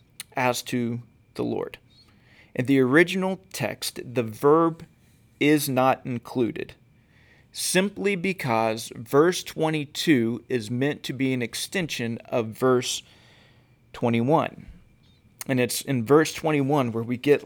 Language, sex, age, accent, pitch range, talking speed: English, male, 40-59, American, 120-150 Hz, 115 wpm